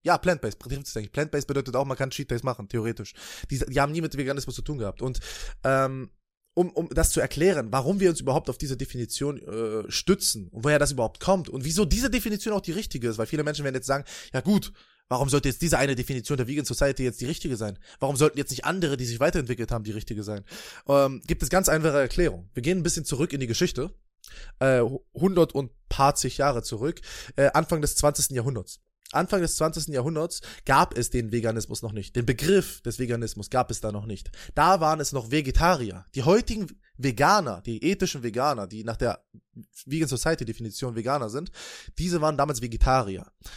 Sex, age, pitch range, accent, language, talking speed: male, 20-39, 120-160 Hz, German, German, 205 wpm